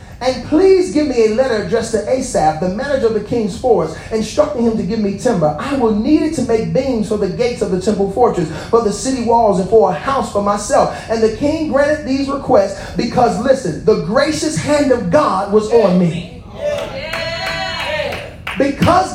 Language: English